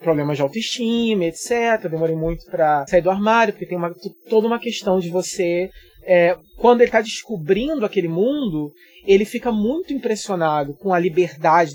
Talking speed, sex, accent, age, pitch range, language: 165 wpm, male, Brazilian, 20-39, 165-225 Hz, Portuguese